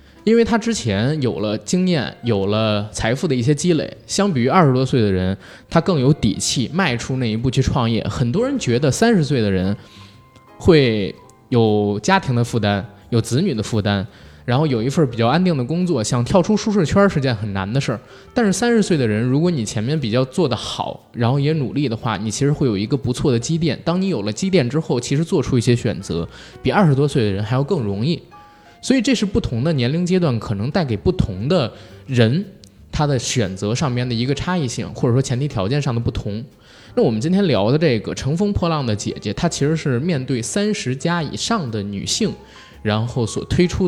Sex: male